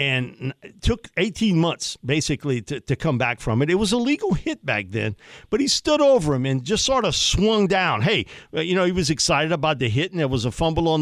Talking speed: 245 wpm